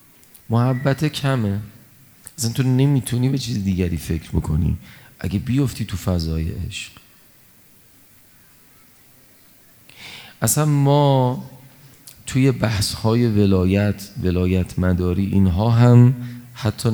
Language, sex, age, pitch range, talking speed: Persian, male, 40-59, 95-120 Hz, 90 wpm